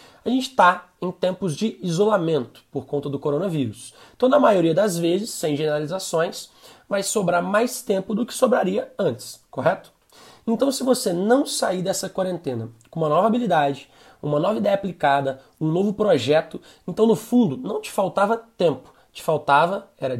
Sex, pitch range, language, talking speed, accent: male, 160-220 Hz, Portuguese, 165 wpm, Brazilian